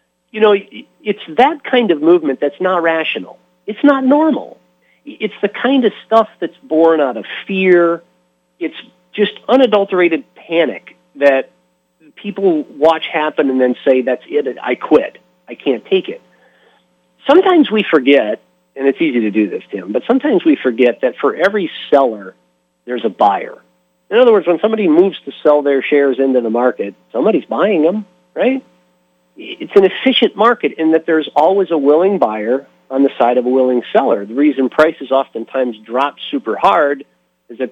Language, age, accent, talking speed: English, 40-59, American, 170 wpm